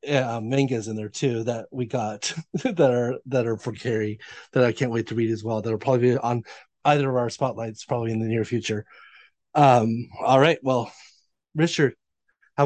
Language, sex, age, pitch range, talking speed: English, male, 30-49, 120-145 Hz, 200 wpm